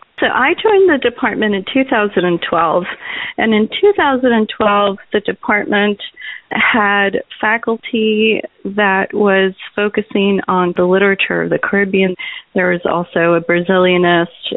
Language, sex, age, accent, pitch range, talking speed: English, female, 30-49, American, 180-220 Hz, 140 wpm